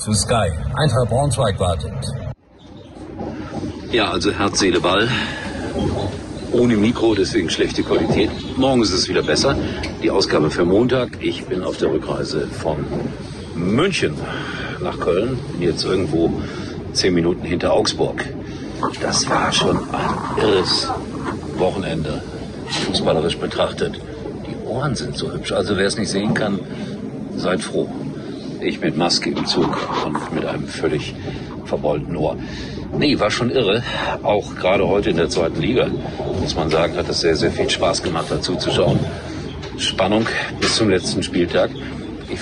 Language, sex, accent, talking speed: German, male, German, 140 wpm